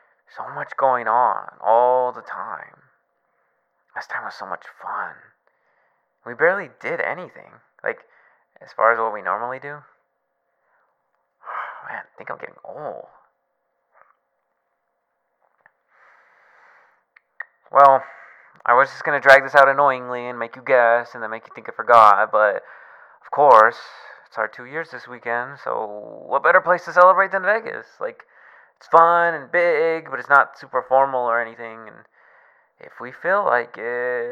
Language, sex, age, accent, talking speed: English, male, 30-49, American, 150 wpm